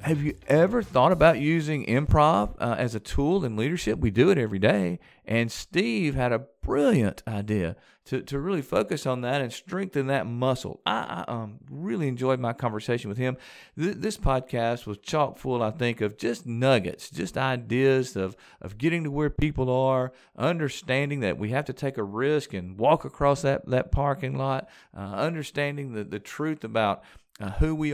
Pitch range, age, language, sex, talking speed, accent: 105-145 Hz, 40-59, English, male, 185 wpm, American